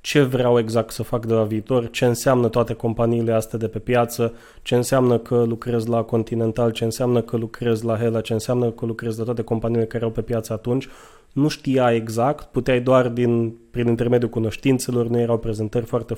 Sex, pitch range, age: male, 115-130 Hz, 20-39